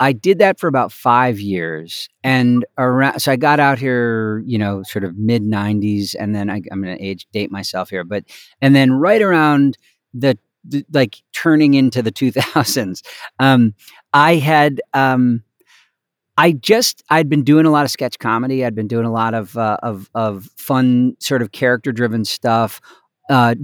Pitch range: 110-140 Hz